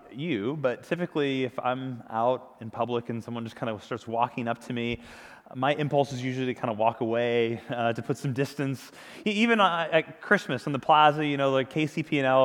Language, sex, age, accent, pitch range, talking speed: English, male, 20-39, American, 125-160 Hz, 205 wpm